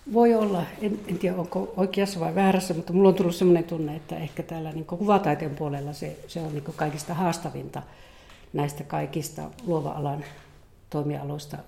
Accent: native